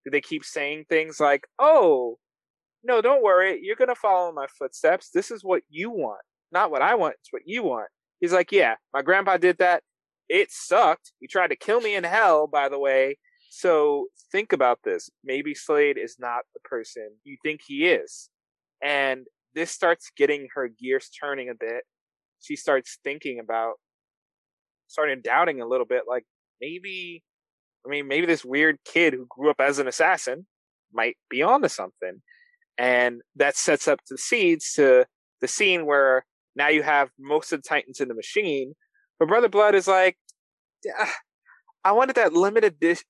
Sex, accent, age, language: male, American, 20-39, English